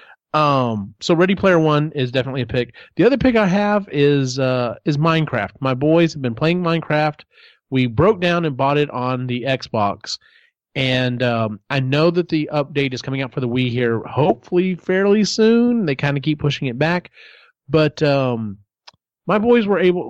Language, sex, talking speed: English, male, 190 wpm